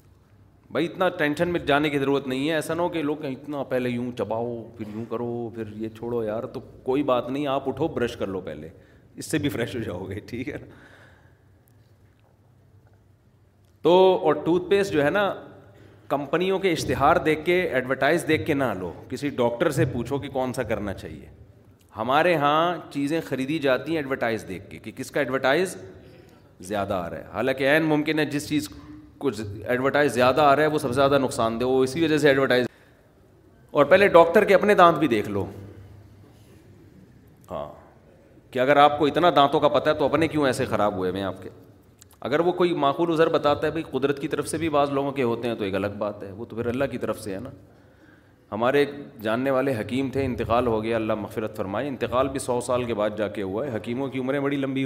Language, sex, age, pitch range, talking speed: Urdu, male, 40-59, 110-145 Hz, 210 wpm